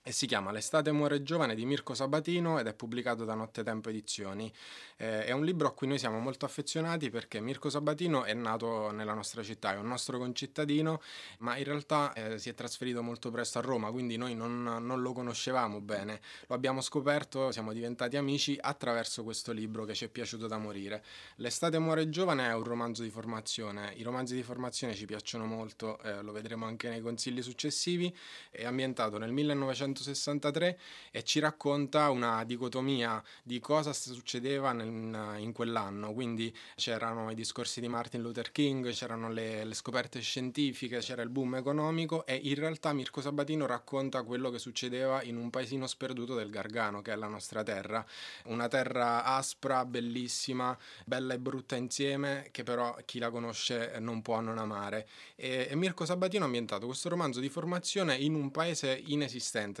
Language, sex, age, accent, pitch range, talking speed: Italian, male, 20-39, native, 115-140 Hz, 175 wpm